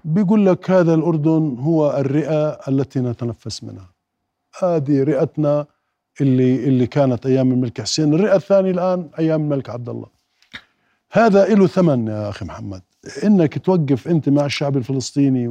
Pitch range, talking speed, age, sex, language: 120-160 Hz, 140 wpm, 50-69, male, Arabic